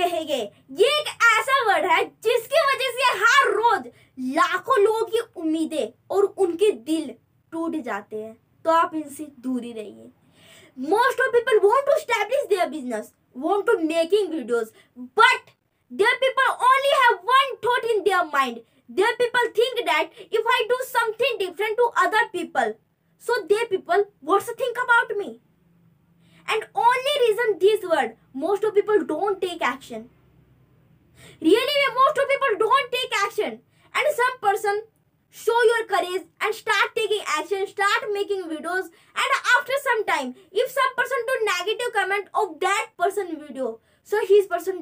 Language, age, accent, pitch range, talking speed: Hindi, 20-39, native, 315-465 Hz, 125 wpm